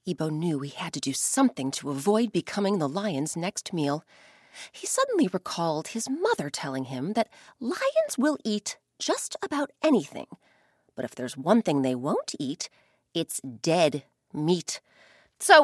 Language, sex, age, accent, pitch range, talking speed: English, female, 30-49, American, 160-260 Hz, 155 wpm